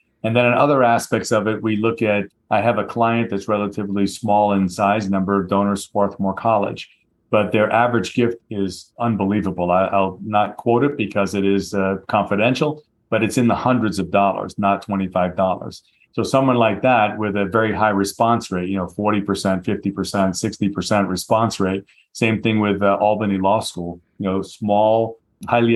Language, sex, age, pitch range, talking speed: English, male, 40-59, 100-115 Hz, 170 wpm